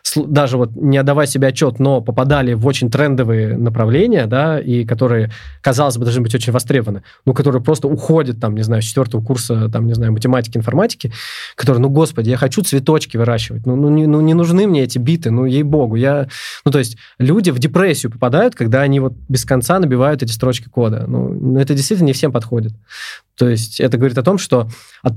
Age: 20-39